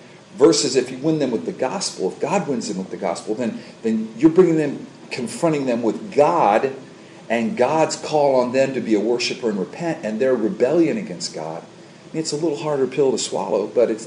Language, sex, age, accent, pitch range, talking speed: English, male, 40-59, American, 115-150 Hz, 220 wpm